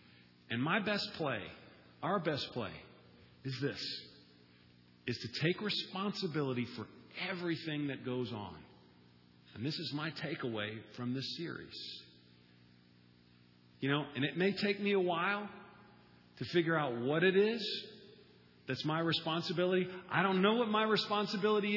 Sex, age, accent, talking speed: male, 40-59, American, 140 wpm